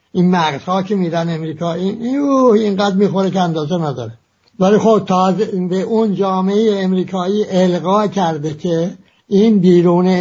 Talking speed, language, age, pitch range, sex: 140 wpm, English, 60-79, 155-200 Hz, male